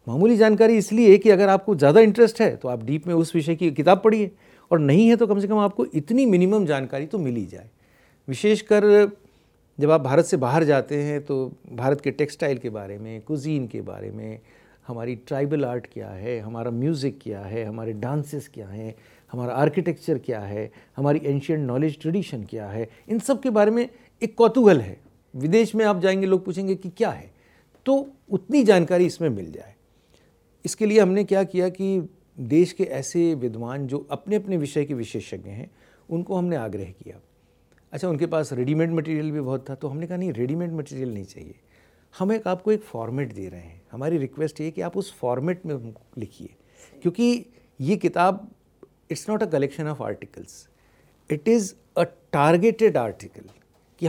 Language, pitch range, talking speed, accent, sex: Hindi, 125-195 Hz, 185 wpm, native, male